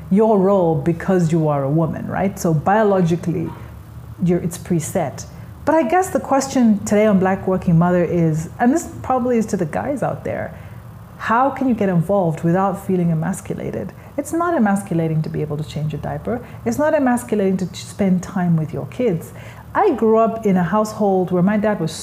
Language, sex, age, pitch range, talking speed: English, female, 30-49, 165-215 Hz, 190 wpm